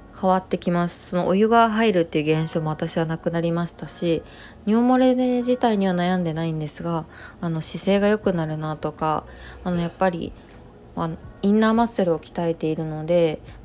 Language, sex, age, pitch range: Japanese, female, 20-39, 160-190 Hz